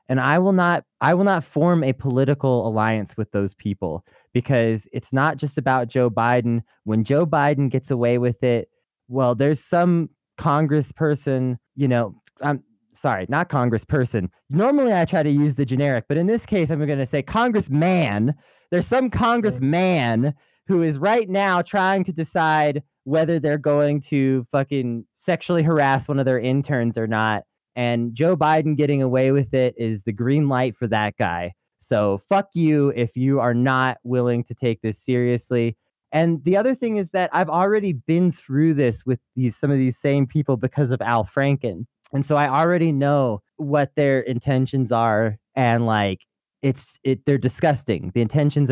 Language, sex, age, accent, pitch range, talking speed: English, male, 20-39, American, 120-155 Hz, 175 wpm